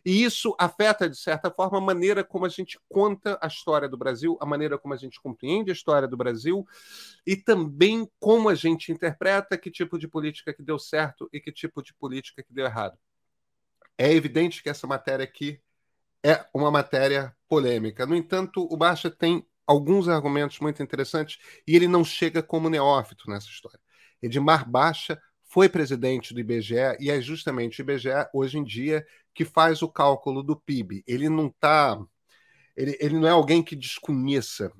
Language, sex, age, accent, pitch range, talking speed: Portuguese, male, 40-59, Brazilian, 135-170 Hz, 180 wpm